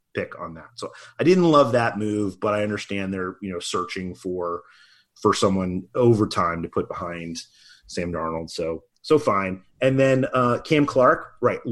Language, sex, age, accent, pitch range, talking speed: English, male, 30-49, American, 95-120 Hz, 180 wpm